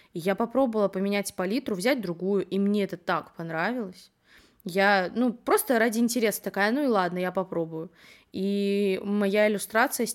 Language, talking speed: Russian, 155 wpm